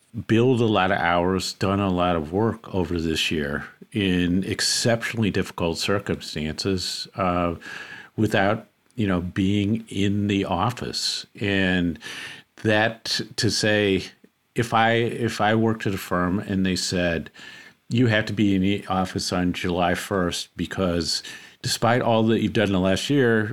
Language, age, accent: English, 50-69, American